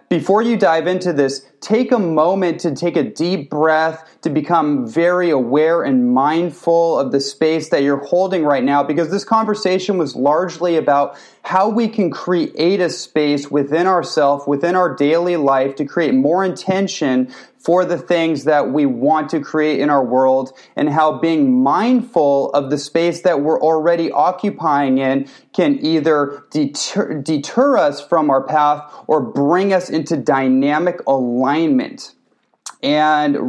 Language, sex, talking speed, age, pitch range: English, male, 155 wpm, 30-49, 135-165 Hz